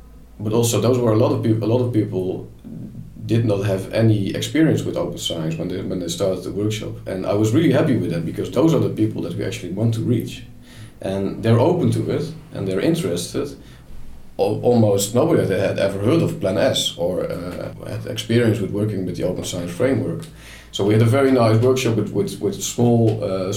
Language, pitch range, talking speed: English, 95-115 Hz, 215 wpm